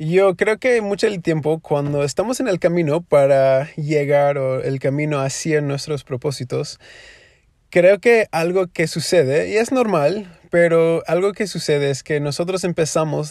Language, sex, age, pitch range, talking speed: Spanish, male, 20-39, 150-185 Hz, 160 wpm